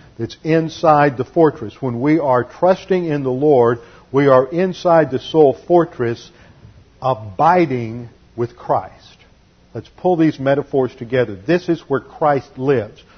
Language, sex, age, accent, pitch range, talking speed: English, male, 50-69, American, 125-160 Hz, 135 wpm